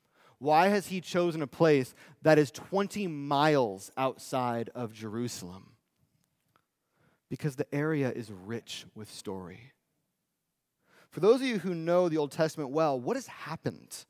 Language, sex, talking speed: English, male, 140 wpm